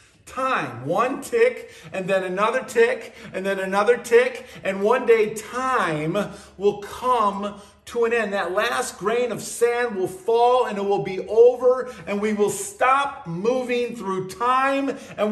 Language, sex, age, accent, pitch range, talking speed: English, male, 50-69, American, 130-215 Hz, 155 wpm